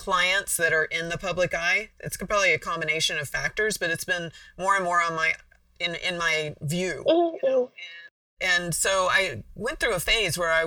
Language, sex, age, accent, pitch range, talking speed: English, female, 40-59, American, 150-175 Hz, 195 wpm